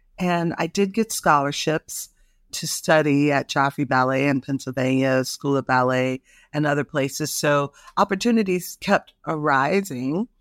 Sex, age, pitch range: female, 50-69, 145-175 Hz